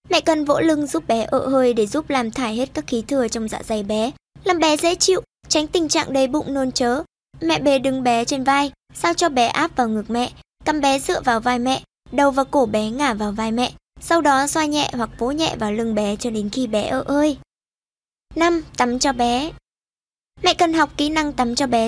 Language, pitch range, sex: Vietnamese, 245-310 Hz, male